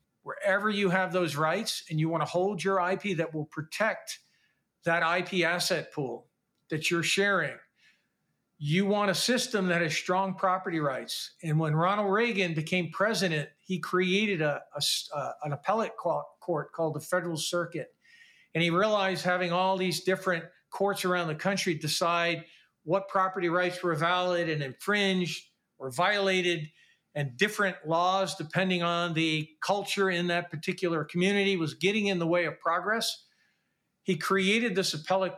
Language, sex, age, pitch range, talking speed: English, male, 50-69, 165-195 Hz, 155 wpm